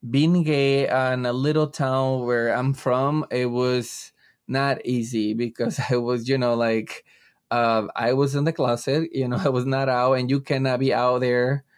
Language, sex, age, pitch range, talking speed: English, male, 20-39, 120-135 Hz, 190 wpm